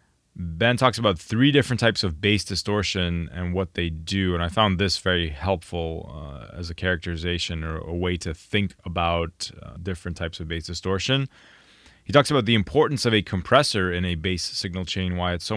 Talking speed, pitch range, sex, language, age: 195 wpm, 90-110 Hz, male, English, 20-39